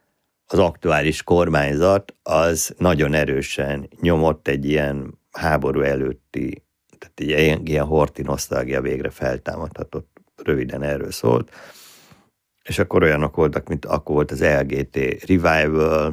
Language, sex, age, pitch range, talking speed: Hungarian, male, 50-69, 70-90 Hz, 115 wpm